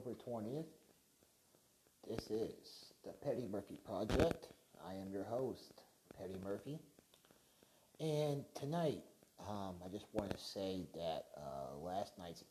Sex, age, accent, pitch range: male, 30-49, American, 90-125 Hz